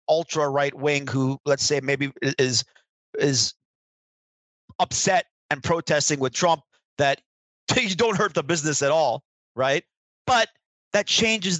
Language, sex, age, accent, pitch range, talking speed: English, male, 30-49, American, 125-160 Hz, 125 wpm